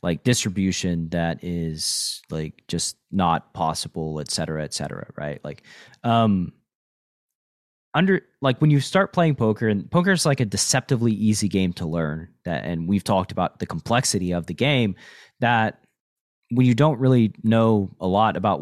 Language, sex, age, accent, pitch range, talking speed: English, male, 30-49, American, 95-125 Hz, 165 wpm